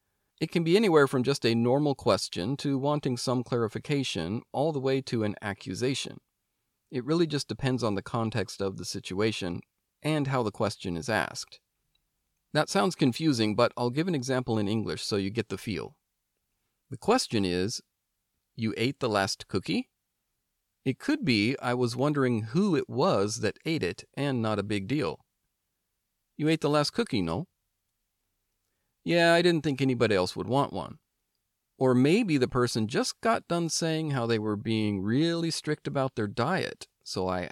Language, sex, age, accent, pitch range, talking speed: English, male, 40-59, American, 105-145 Hz, 175 wpm